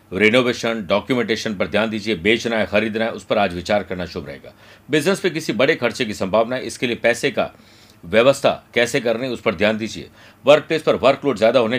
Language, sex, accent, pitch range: Hindi, male, native, 105-135 Hz